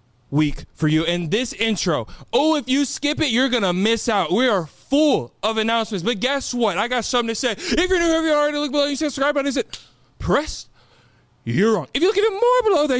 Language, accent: English, American